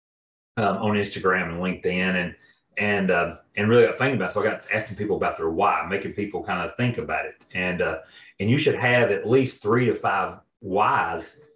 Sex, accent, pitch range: male, American, 95-115 Hz